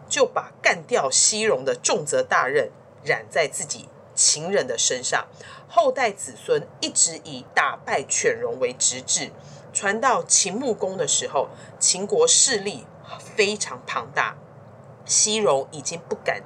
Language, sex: Chinese, female